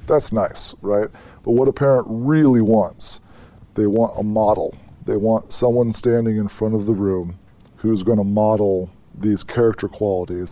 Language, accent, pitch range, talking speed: English, American, 95-115 Hz, 160 wpm